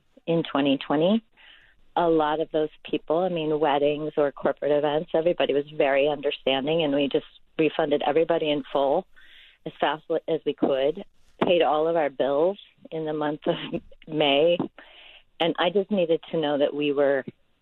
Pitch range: 150-175 Hz